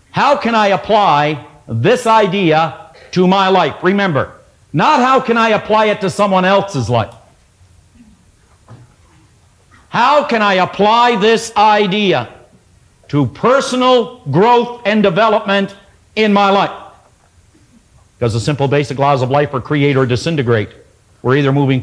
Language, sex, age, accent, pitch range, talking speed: English, male, 60-79, American, 120-195 Hz, 130 wpm